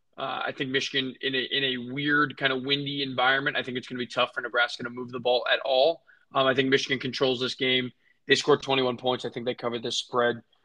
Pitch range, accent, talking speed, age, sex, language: 125-145 Hz, American, 255 wpm, 20-39, male, English